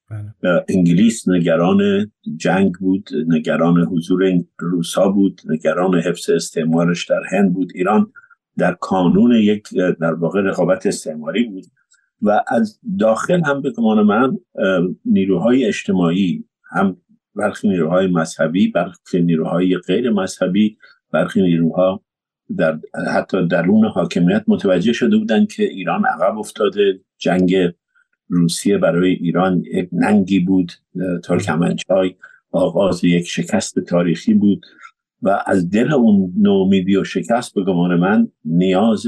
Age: 50-69